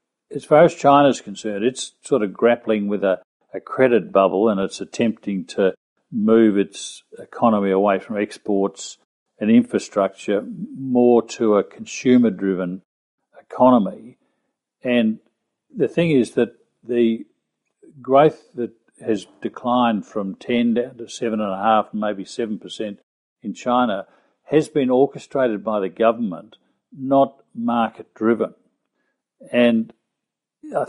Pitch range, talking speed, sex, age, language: 105-125 Hz, 130 wpm, male, 50-69, English